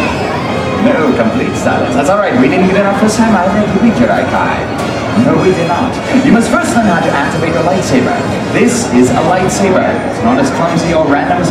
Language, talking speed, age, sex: English, 220 wpm, 30-49, male